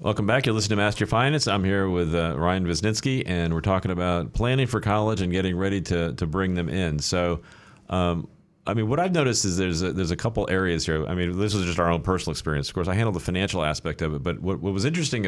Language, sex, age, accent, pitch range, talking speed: English, male, 40-59, American, 80-100 Hz, 260 wpm